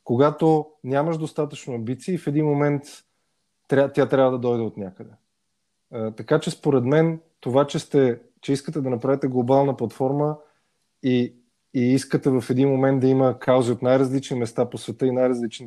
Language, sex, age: Bulgarian, male, 20-39